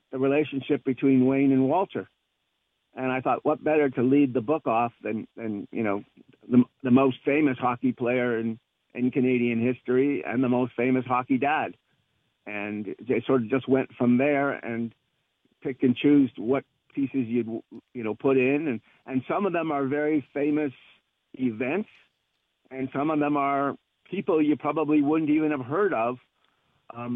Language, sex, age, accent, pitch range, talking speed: English, male, 50-69, American, 125-140 Hz, 170 wpm